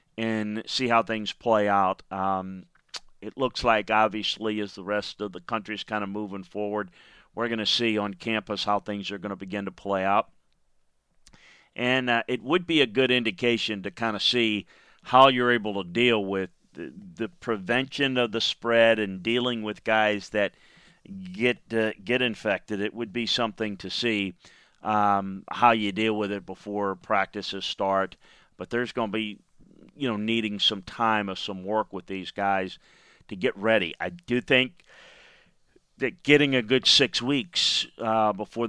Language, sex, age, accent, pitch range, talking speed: English, male, 40-59, American, 100-115 Hz, 180 wpm